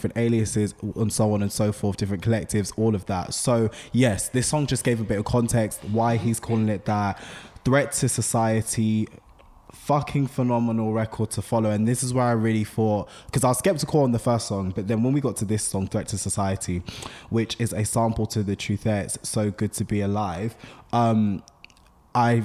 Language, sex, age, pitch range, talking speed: English, male, 20-39, 100-120 Hz, 205 wpm